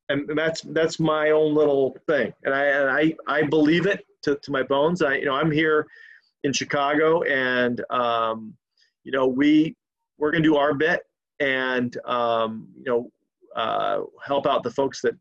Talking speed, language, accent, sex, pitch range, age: 180 wpm, English, American, male, 130-155 Hz, 40-59